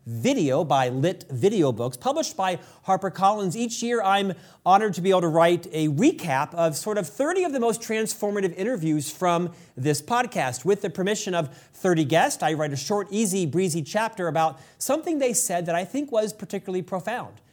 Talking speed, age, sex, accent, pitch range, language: 185 wpm, 40-59, male, American, 155-205 Hz, English